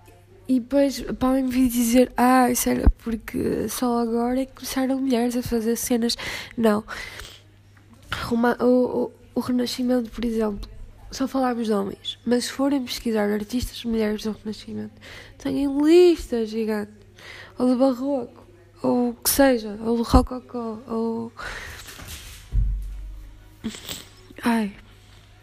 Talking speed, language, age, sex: 120 wpm, Portuguese, 10-29, female